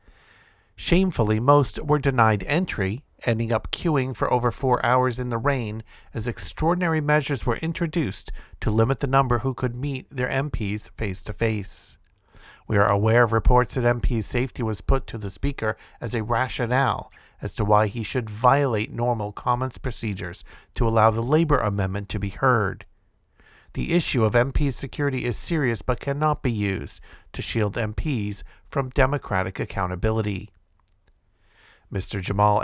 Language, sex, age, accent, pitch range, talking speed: English, male, 50-69, American, 105-130 Hz, 150 wpm